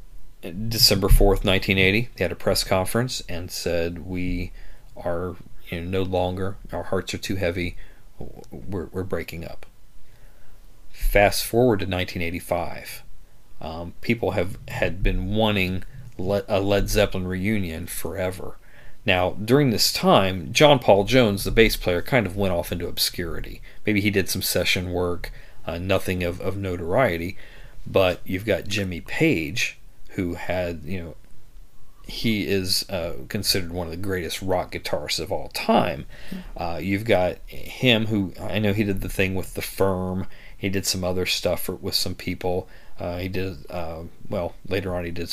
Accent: American